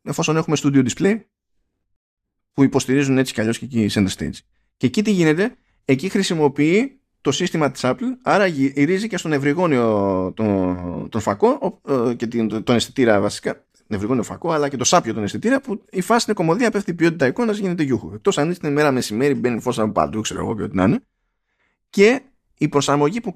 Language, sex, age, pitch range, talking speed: Greek, male, 20-39, 110-170 Hz, 195 wpm